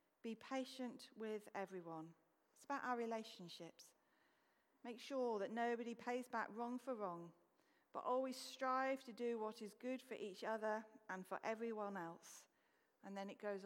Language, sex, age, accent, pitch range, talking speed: English, female, 40-59, British, 210-285 Hz, 160 wpm